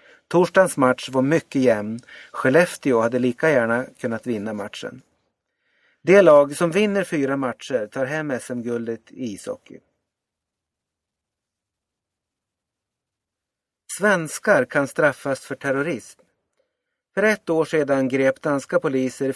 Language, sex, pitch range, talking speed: Swedish, male, 125-165 Hz, 110 wpm